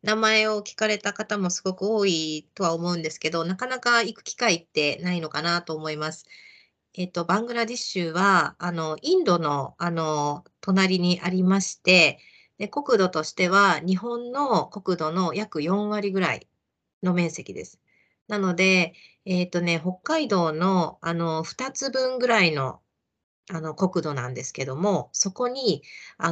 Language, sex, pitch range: Japanese, female, 155-195 Hz